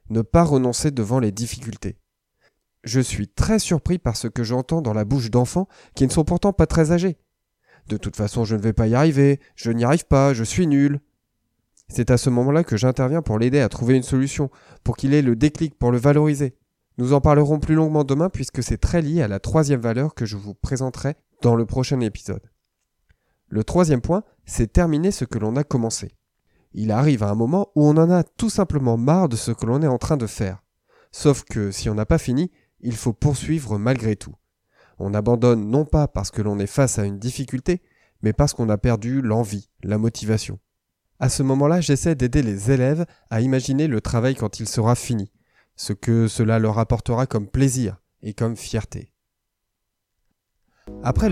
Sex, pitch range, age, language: male, 110-145 Hz, 20-39, French